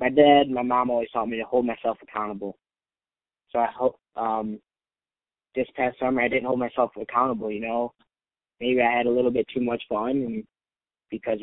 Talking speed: 195 wpm